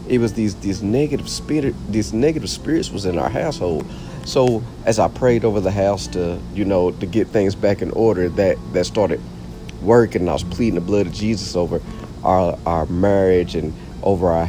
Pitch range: 85-110 Hz